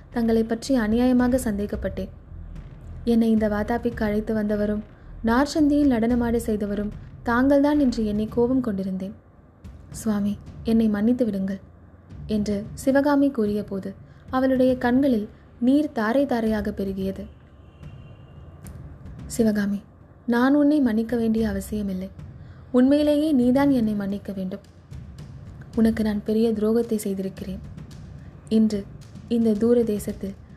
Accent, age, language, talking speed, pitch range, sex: native, 20-39, Tamil, 100 wpm, 205-245 Hz, female